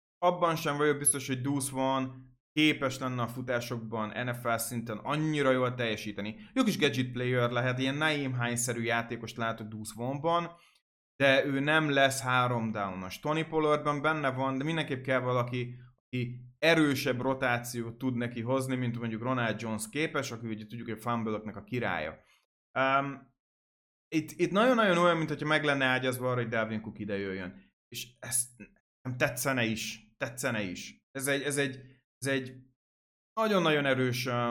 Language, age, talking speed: Hungarian, 30-49, 155 wpm